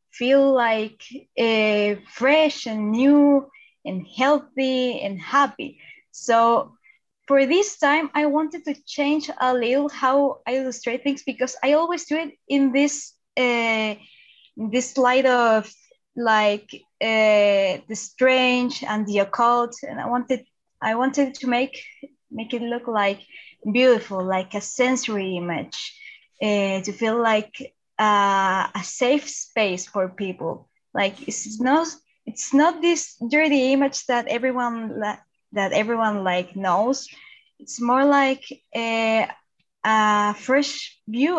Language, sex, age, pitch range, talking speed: English, female, 20-39, 220-275 Hz, 130 wpm